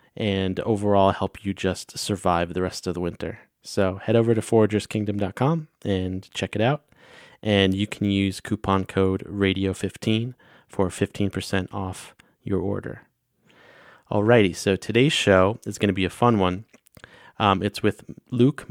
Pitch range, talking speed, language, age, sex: 95-105 Hz, 150 wpm, English, 30-49, male